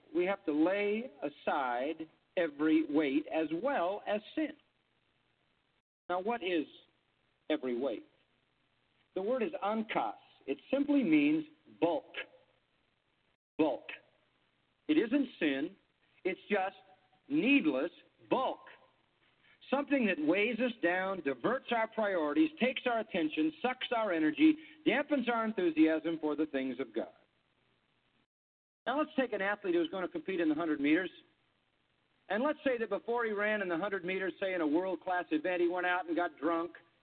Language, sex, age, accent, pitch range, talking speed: English, male, 50-69, American, 175-285 Hz, 145 wpm